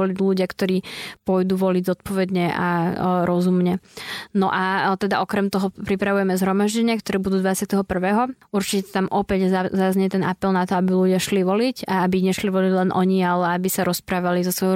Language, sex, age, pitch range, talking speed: Slovak, female, 20-39, 185-200 Hz, 170 wpm